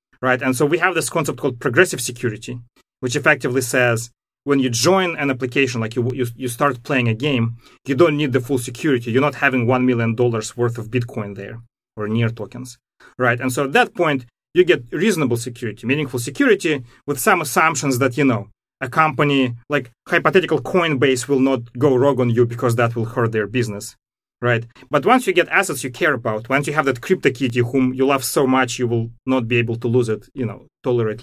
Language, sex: English, male